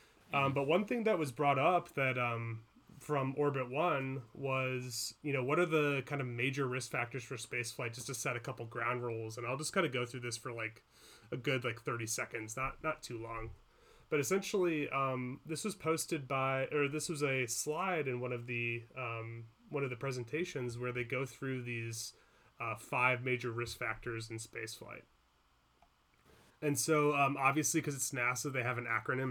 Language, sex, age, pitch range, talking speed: English, male, 30-49, 120-140 Hz, 200 wpm